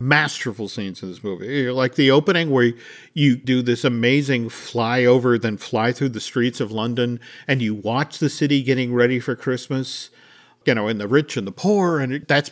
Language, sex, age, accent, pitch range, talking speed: English, male, 50-69, American, 120-155 Hz, 190 wpm